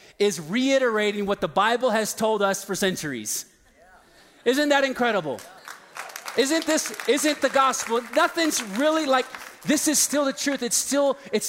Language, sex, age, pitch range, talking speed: English, male, 30-49, 180-235 Hz, 150 wpm